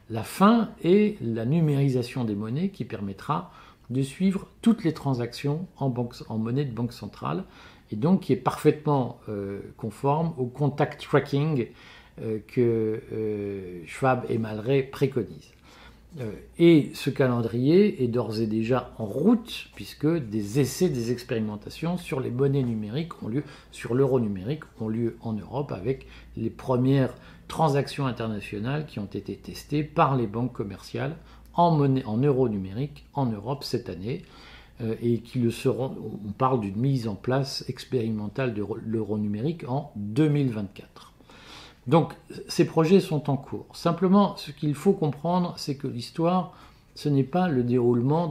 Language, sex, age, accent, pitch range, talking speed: French, male, 50-69, French, 115-150 Hz, 155 wpm